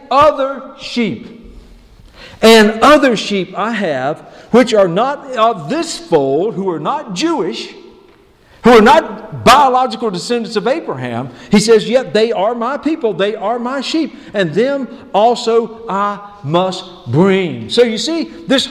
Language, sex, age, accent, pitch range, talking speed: English, male, 50-69, American, 185-265 Hz, 145 wpm